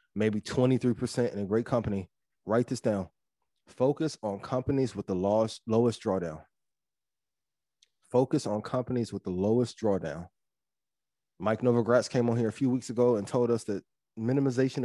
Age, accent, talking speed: 20-39, American, 150 wpm